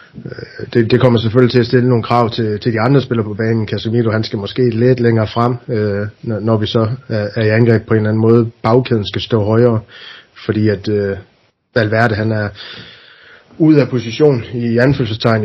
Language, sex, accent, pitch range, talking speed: Danish, male, native, 105-120 Hz, 200 wpm